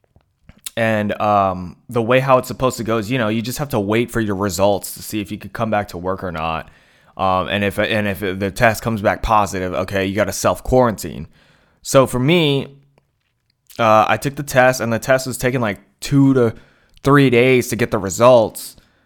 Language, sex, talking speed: English, male, 215 wpm